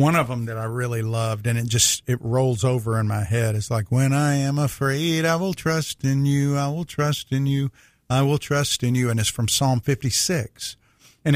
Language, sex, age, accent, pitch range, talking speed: English, male, 50-69, American, 115-145 Hz, 225 wpm